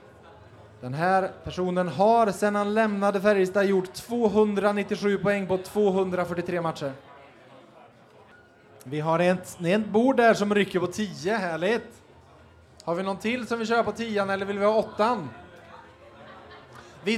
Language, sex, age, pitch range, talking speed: Swedish, male, 20-39, 170-215 Hz, 135 wpm